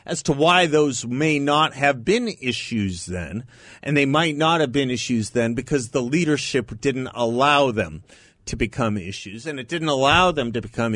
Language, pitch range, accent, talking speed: English, 110-140 Hz, American, 185 wpm